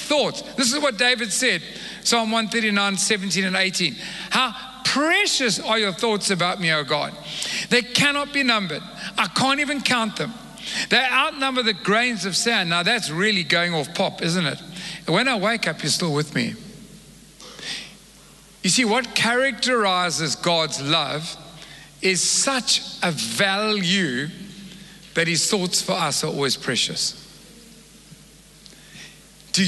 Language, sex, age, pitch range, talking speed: English, male, 50-69, 175-230 Hz, 140 wpm